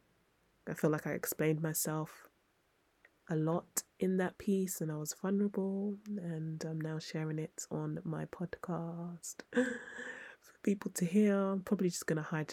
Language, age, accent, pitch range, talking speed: English, 20-39, British, 155-190 Hz, 160 wpm